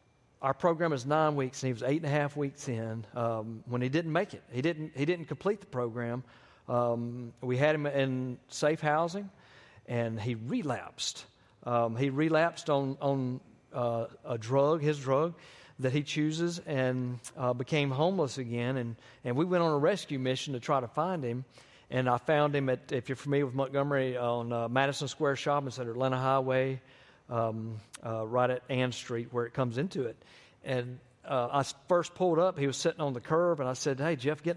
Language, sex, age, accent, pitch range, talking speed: English, male, 50-69, American, 125-155 Hz, 205 wpm